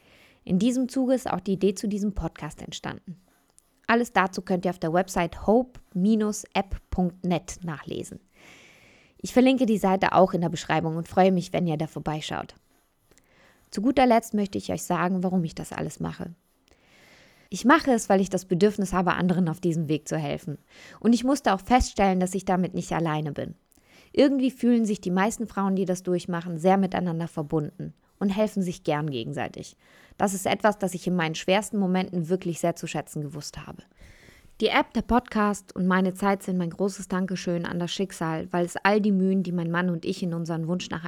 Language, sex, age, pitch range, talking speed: German, female, 20-39, 170-205 Hz, 195 wpm